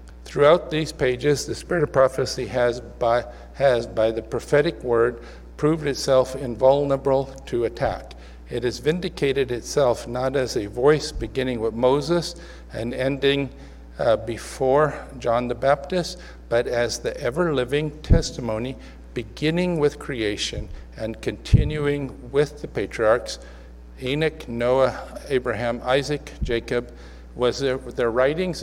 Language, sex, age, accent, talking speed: English, male, 50-69, American, 120 wpm